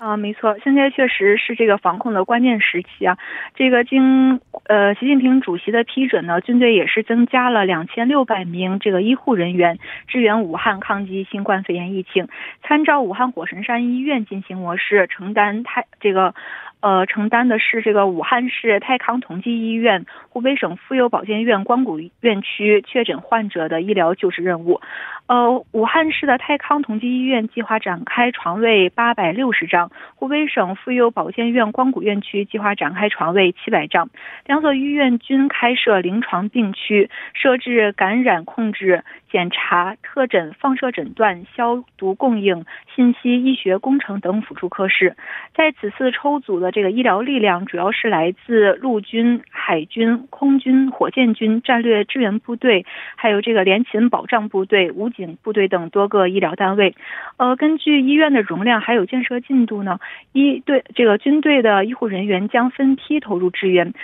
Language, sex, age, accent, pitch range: Korean, female, 20-39, Chinese, 195-255 Hz